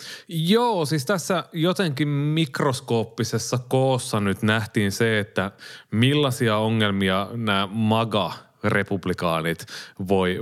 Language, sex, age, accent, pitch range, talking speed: Finnish, male, 30-49, native, 100-135 Hz, 85 wpm